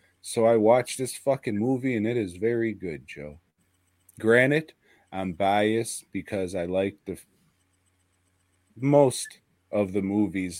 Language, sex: English, male